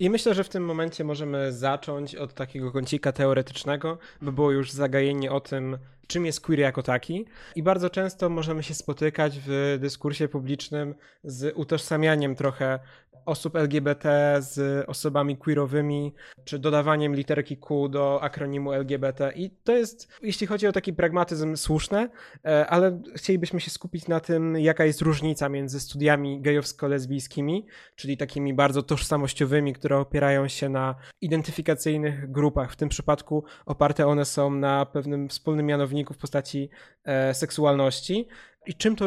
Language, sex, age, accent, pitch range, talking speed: Polish, male, 20-39, native, 140-165 Hz, 145 wpm